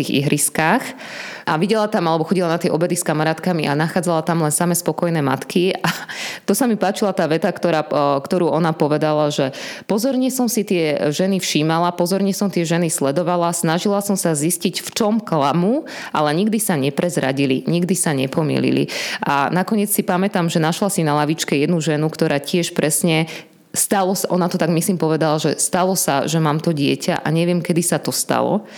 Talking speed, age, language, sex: 185 wpm, 20-39, Slovak, female